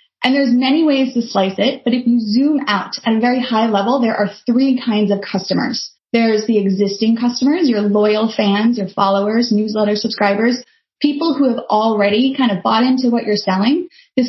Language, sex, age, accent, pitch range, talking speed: English, female, 20-39, American, 200-265 Hz, 195 wpm